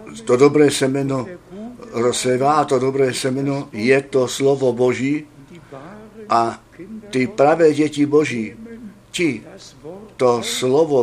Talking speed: 105 wpm